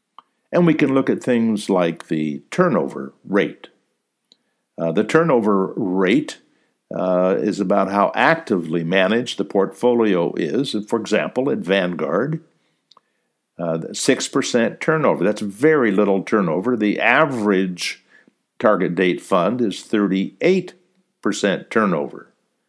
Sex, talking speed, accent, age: male, 110 wpm, American, 60-79